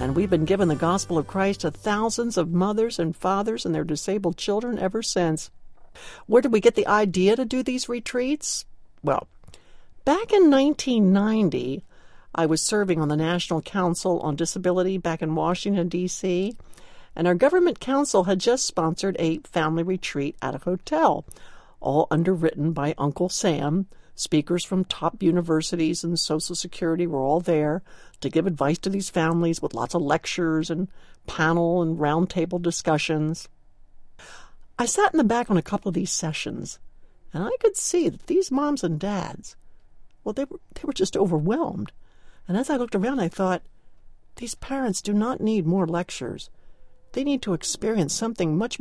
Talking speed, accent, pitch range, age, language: 170 wpm, American, 165-220 Hz, 60-79, English